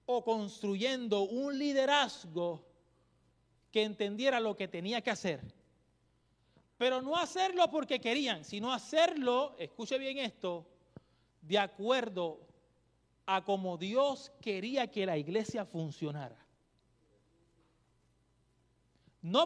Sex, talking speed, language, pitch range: male, 100 wpm, English, 195-260 Hz